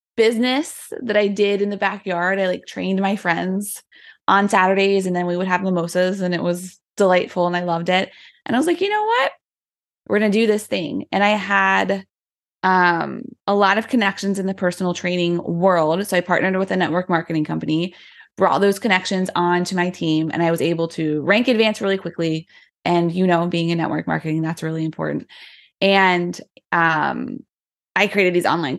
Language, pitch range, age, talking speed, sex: English, 175-215 Hz, 20-39, 195 wpm, female